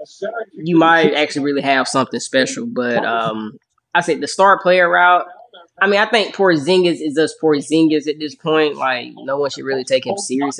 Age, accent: 10-29, American